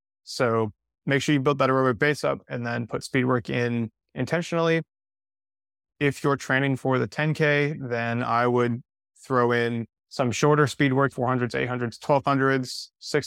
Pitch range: 115-135 Hz